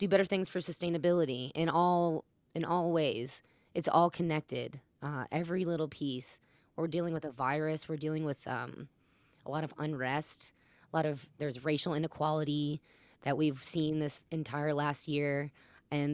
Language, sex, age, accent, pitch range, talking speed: English, female, 20-39, American, 140-160 Hz, 165 wpm